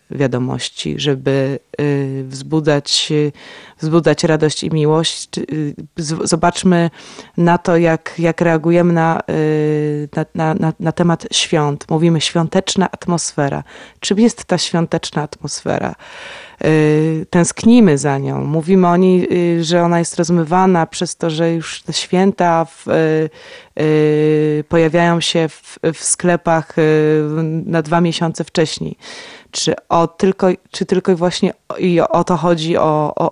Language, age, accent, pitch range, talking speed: Polish, 20-39, native, 155-180 Hz, 120 wpm